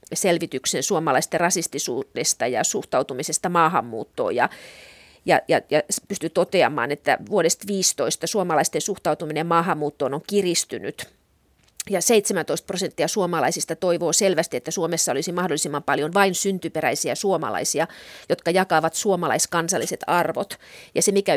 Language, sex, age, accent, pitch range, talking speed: Finnish, female, 30-49, native, 160-195 Hz, 110 wpm